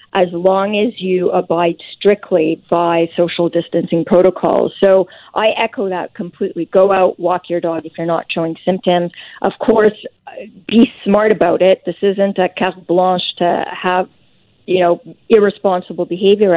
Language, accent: English, American